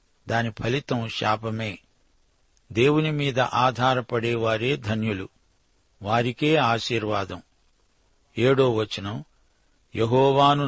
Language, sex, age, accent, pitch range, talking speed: Telugu, male, 50-69, native, 115-135 Hz, 60 wpm